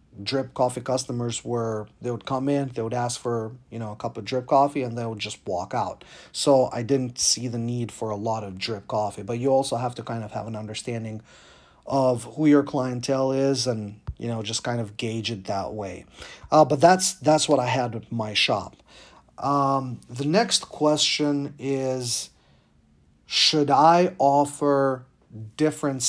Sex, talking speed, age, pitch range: male, 185 wpm, 40-59, 115-145 Hz